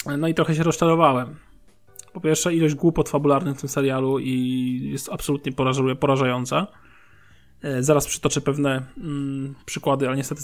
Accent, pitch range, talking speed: native, 135-165 Hz, 140 wpm